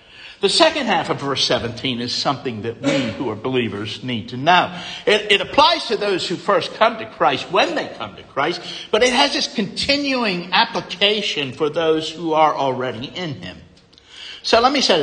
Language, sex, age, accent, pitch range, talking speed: English, male, 60-79, American, 140-230 Hz, 190 wpm